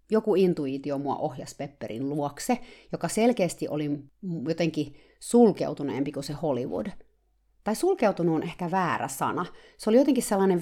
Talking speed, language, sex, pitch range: 135 wpm, Finnish, female, 145-205 Hz